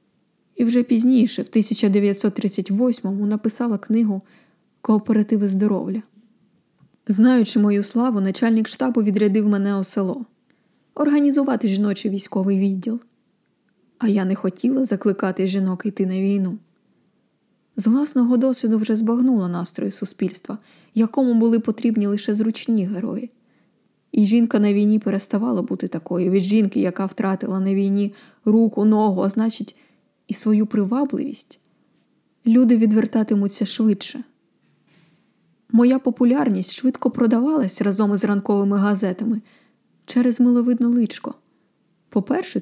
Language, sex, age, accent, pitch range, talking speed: Ukrainian, female, 20-39, native, 200-235 Hz, 110 wpm